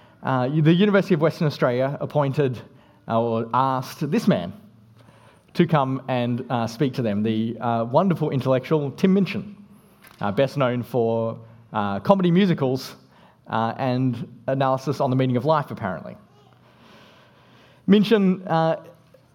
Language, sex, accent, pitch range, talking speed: English, male, Australian, 130-185 Hz, 130 wpm